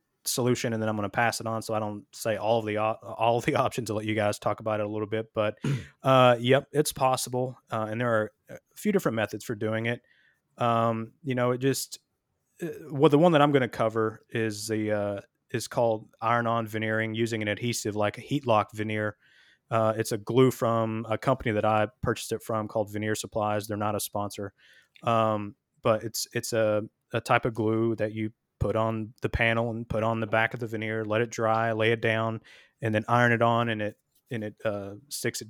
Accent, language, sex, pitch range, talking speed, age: American, English, male, 110-120 Hz, 225 wpm, 20-39